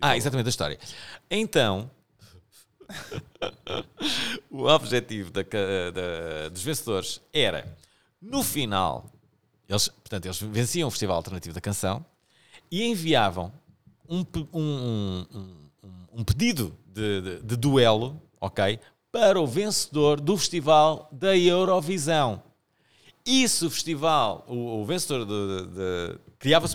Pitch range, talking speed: 105-155 Hz, 110 wpm